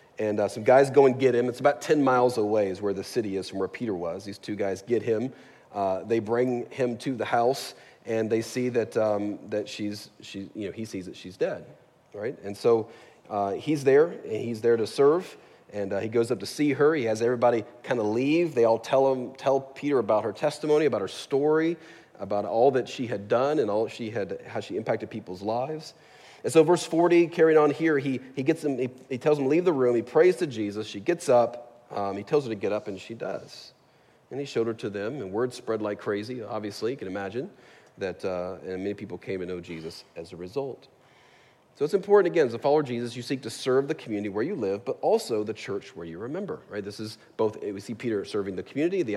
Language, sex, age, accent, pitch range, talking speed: English, male, 30-49, American, 105-140 Hz, 245 wpm